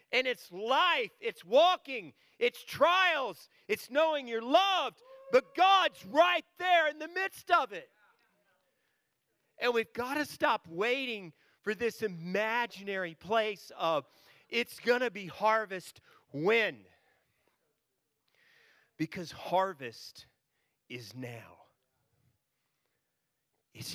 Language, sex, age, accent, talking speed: English, male, 40-59, American, 105 wpm